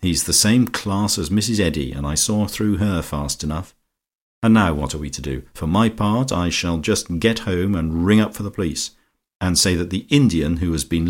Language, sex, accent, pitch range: English, male, British, 80-100 Hz